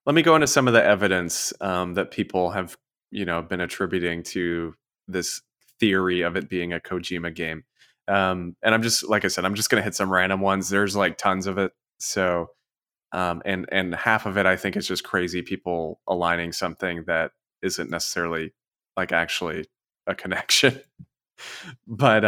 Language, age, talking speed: English, 20-39, 185 wpm